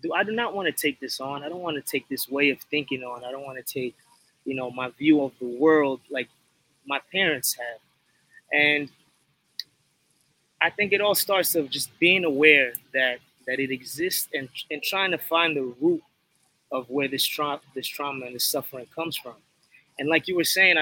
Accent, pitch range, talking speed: American, 135-165 Hz, 205 wpm